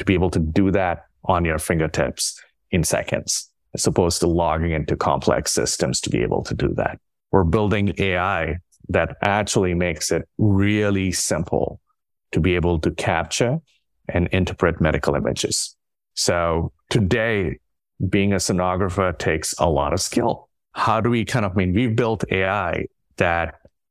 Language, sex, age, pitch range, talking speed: English, male, 30-49, 85-105 Hz, 155 wpm